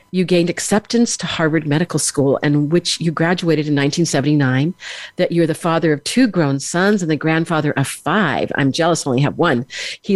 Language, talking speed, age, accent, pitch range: English, 195 wpm, 50-69, American, 145-175 Hz